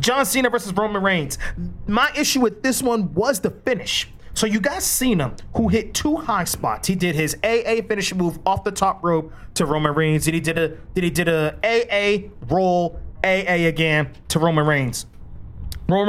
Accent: American